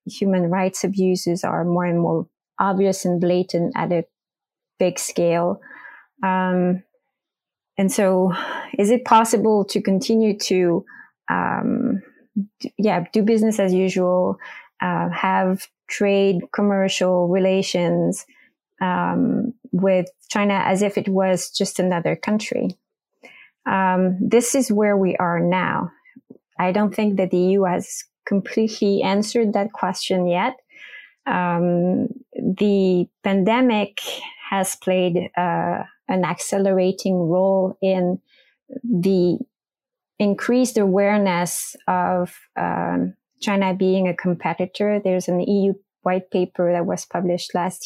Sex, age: female, 20-39